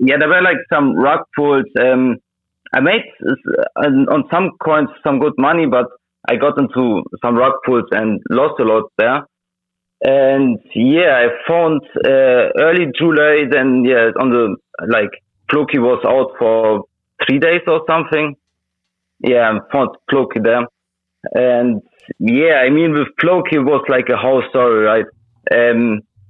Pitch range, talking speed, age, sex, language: 120-155 Hz, 155 wpm, 30-49, male, English